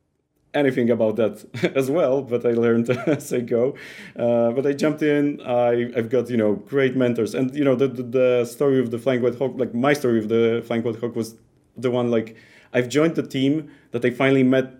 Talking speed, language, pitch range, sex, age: 225 wpm, English, 115-135 Hz, male, 30-49